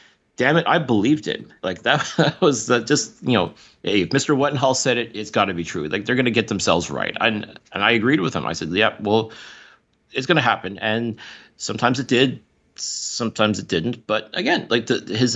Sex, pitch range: male, 105-125 Hz